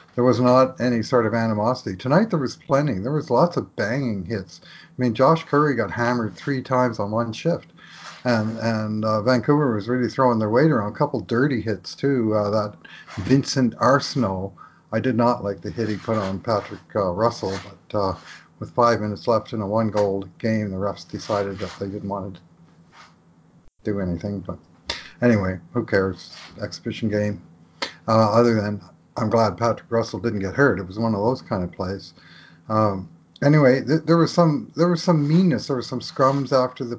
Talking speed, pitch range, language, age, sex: 195 wpm, 105-130 Hz, English, 50-69, male